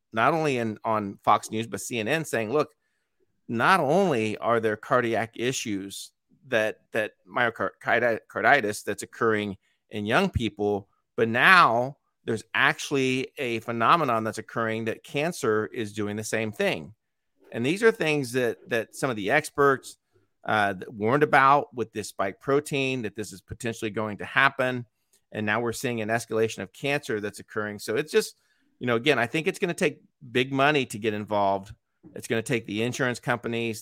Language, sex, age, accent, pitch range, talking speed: English, male, 40-59, American, 110-135 Hz, 170 wpm